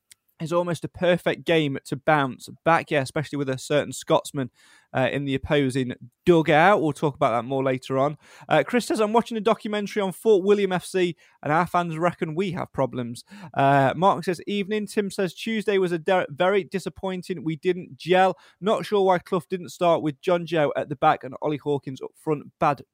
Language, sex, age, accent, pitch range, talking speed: English, male, 20-39, British, 145-185 Hz, 200 wpm